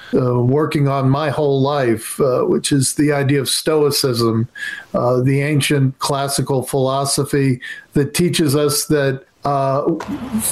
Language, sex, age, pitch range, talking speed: English, male, 50-69, 135-160 Hz, 130 wpm